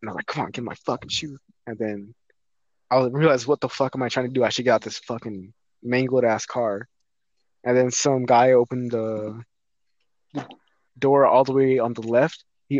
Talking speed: 210 wpm